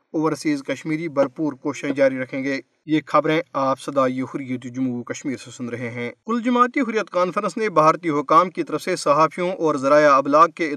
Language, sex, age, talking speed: Urdu, male, 40-59, 185 wpm